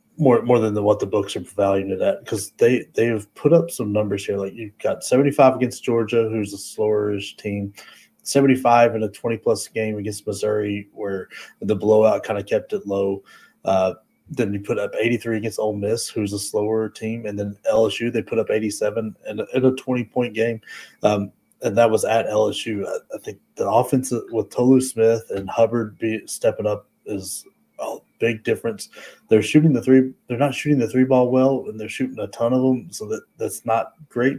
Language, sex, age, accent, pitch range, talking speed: English, male, 30-49, American, 100-120 Hz, 215 wpm